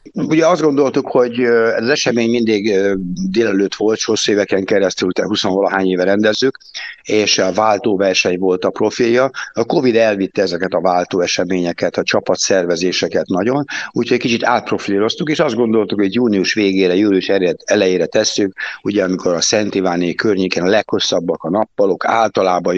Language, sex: Hungarian, male